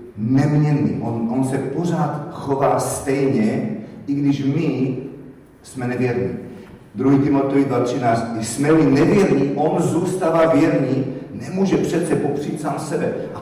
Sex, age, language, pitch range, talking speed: male, 40-59, Czech, 110-145 Hz, 115 wpm